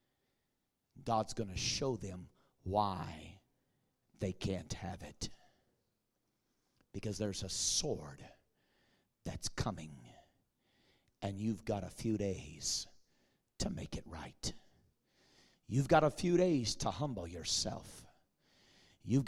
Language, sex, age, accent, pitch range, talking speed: English, male, 40-59, American, 95-140 Hz, 110 wpm